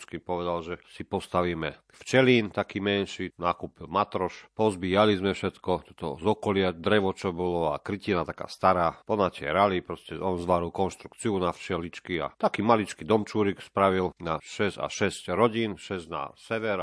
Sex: male